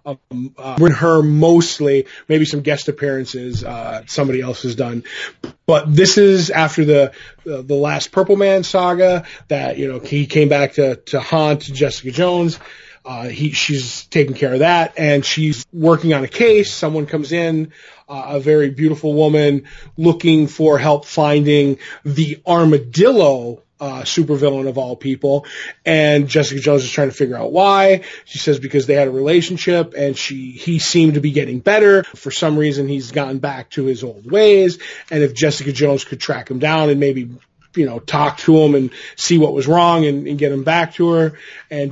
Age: 20-39